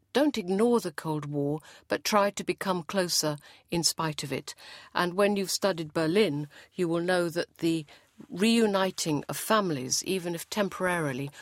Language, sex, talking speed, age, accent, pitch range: English, female, 160 wpm, 50-69, British, 150-195 Hz